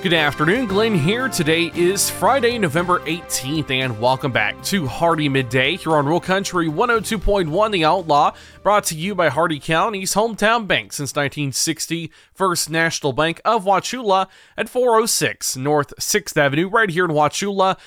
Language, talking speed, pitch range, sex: English, 155 wpm, 145-200 Hz, male